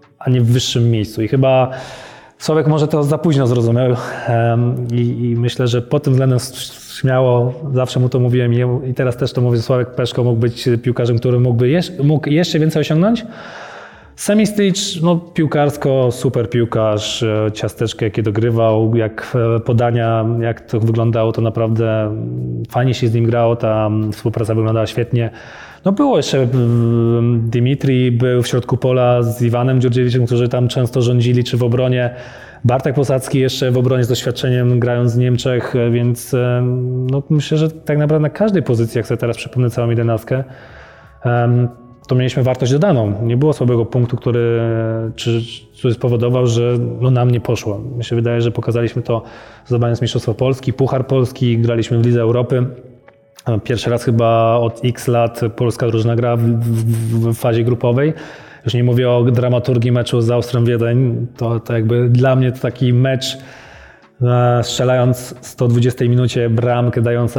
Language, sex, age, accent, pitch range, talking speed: Polish, male, 20-39, native, 115-130 Hz, 160 wpm